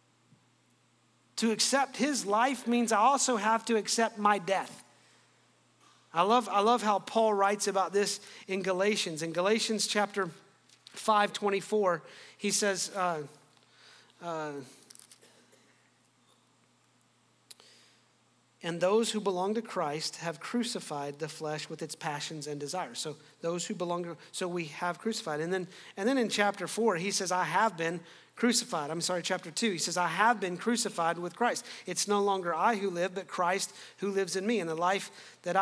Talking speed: 160 wpm